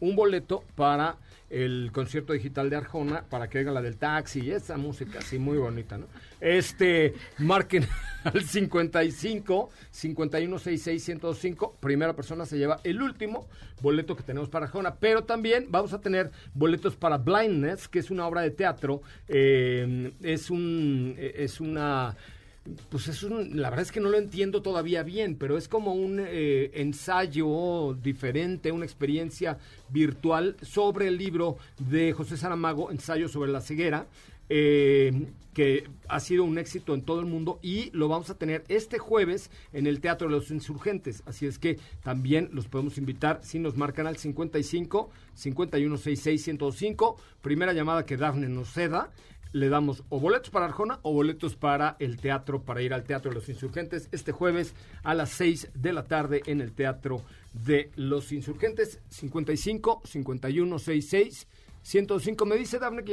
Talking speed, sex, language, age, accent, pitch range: 160 wpm, male, Spanish, 40-59, Mexican, 140-180 Hz